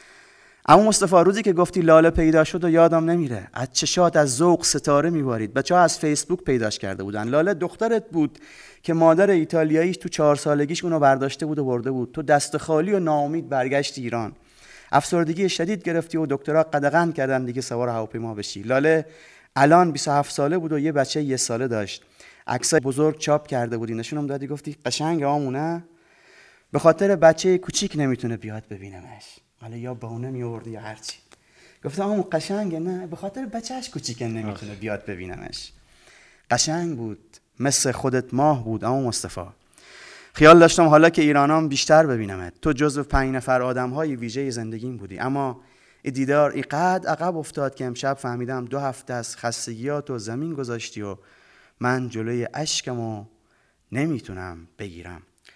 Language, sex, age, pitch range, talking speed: Persian, male, 30-49, 120-165 Hz, 160 wpm